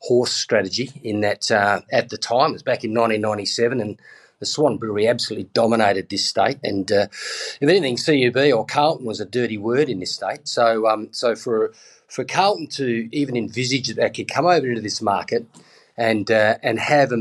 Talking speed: 200 wpm